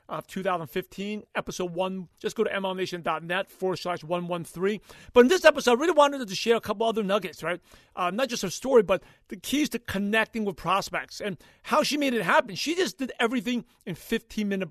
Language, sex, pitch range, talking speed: English, male, 185-230 Hz, 200 wpm